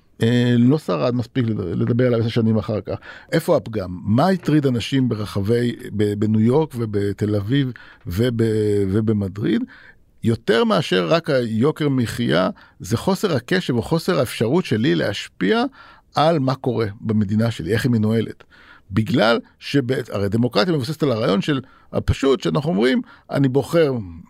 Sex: male